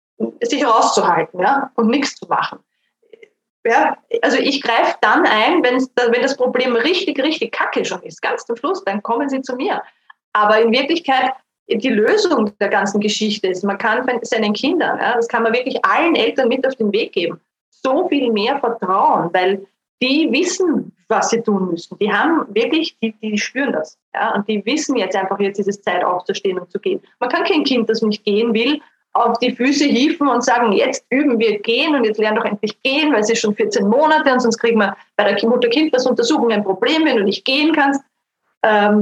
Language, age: German, 20-39